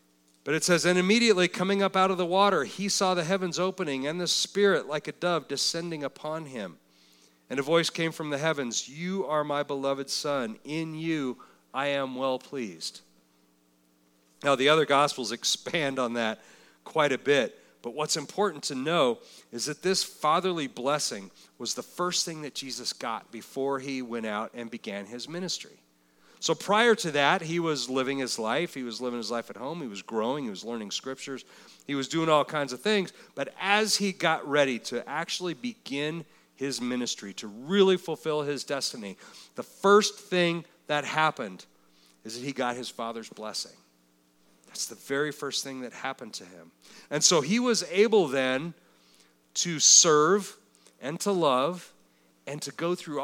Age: 40-59